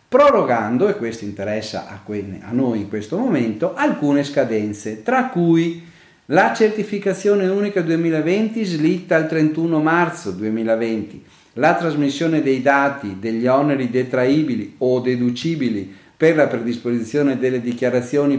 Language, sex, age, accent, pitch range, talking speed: Italian, male, 50-69, native, 120-180 Hz, 115 wpm